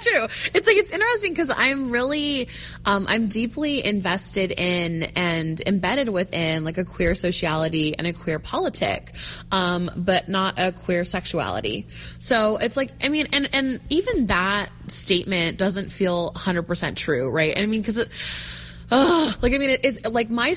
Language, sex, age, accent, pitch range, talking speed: English, female, 20-39, American, 175-220 Hz, 165 wpm